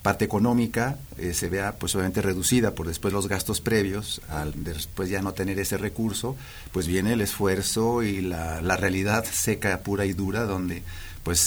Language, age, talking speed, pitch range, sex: Spanish, 40-59, 180 wpm, 90-110 Hz, male